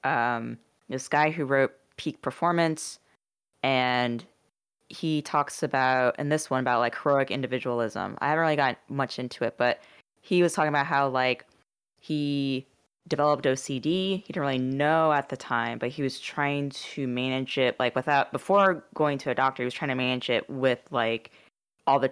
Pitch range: 125-150 Hz